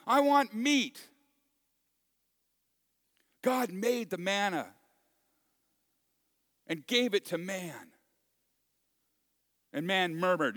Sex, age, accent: male, 50-69, American